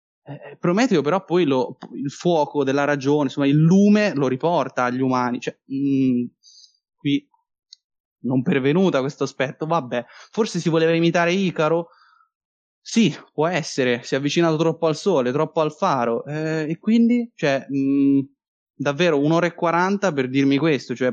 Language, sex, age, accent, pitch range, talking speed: Italian, male, 20-39, native, 135-175 Hz, 150 wpm